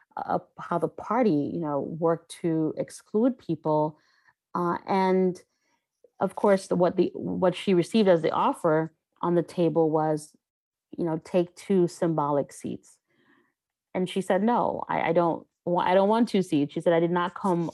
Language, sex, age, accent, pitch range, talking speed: English, female, 30-49, American, 155-185 Hz, 165 wpm